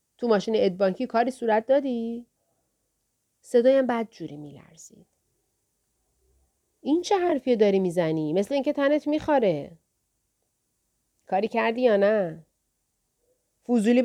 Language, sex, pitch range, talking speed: Persian, female, 185-260 Hz, 100 wpm